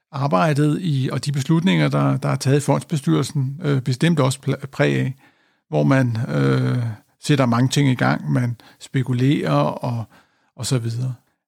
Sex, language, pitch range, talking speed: male, Danish, 135-175 Hz, 150 wpm